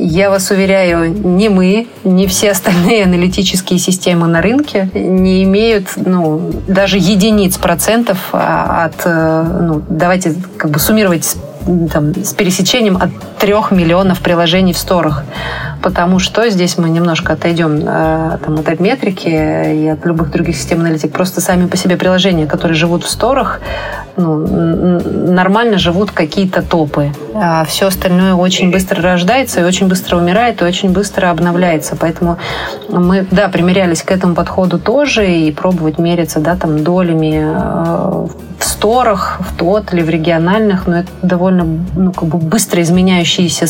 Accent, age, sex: native, 30-49, female